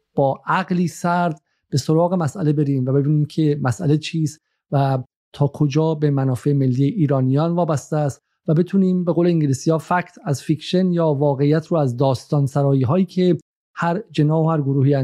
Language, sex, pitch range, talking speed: Persian, male, 140-175 Hz, 170 wpm